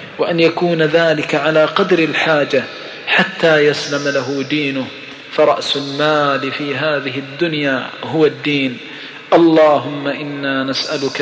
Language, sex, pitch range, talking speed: Arabic, male, 145-155 Hz, 105 wpm